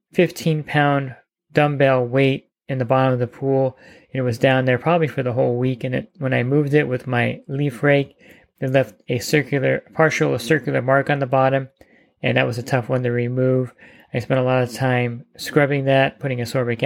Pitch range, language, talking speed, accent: 130-150 Hz, English, 215 wpm, American